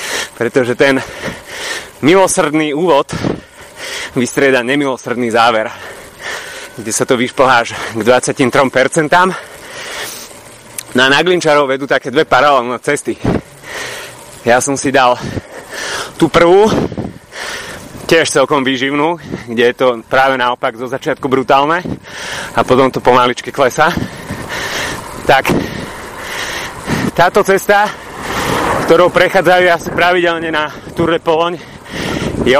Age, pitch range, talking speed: 30-49, 130-180 Hz, 100 wpm